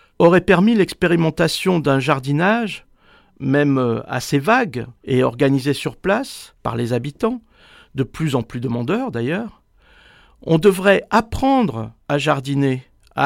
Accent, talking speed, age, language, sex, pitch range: French, 120 wpm, 50-69, French, male, 140-195 Hz